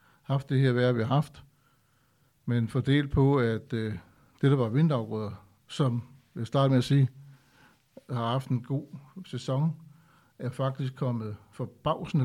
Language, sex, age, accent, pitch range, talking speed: Danish, male, 60-79, native, 115-135 Hz, 155 wpm